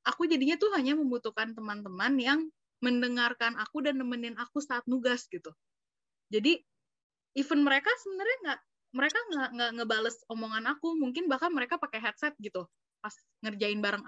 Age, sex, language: 20-39, female, Indonesian